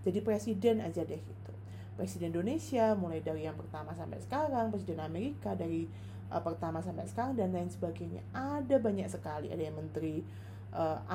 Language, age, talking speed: Indonesian, 20-39, 160 wpm